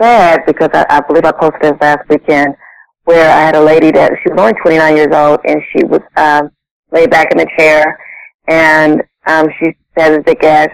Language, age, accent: English, 30-49, American